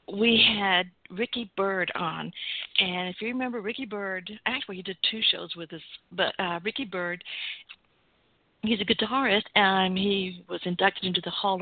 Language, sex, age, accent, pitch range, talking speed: English, female, 50-69, American, 180-215 Hz, 165 wpm